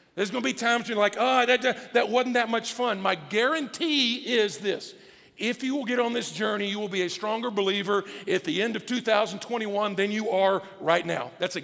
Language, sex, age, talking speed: English, male, 50-69, 225 wpm